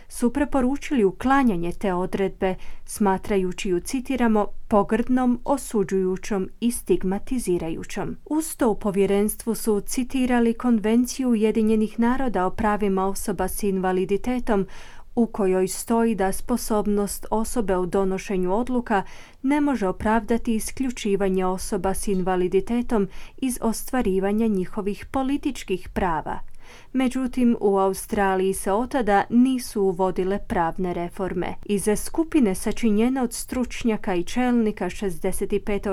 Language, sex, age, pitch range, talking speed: Croatian, female, 30-49, 190-240 Hz, 110 wpm